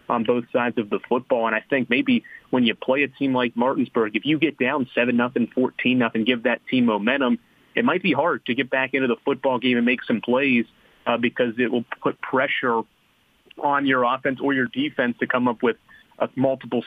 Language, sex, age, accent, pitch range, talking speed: English, male, 30-49, American, 115-135 Hz, 225 wpm